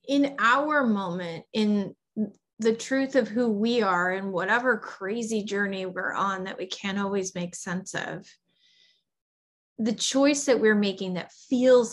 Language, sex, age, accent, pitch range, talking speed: English, female, 20-39, American, 195-245 Hz, 150 wpm